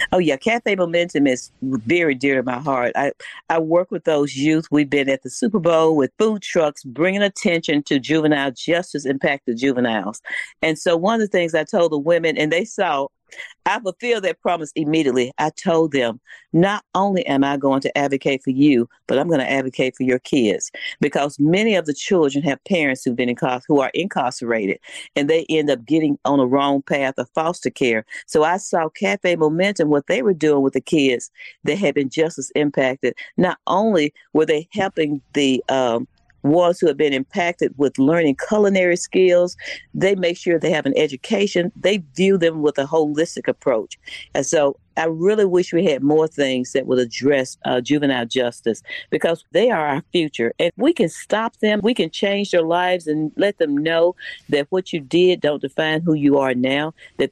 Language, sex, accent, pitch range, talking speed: English, female, American, 135-175 Hz, 195 wpm